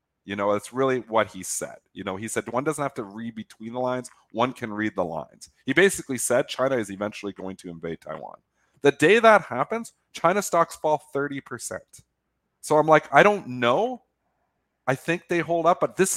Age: 40-59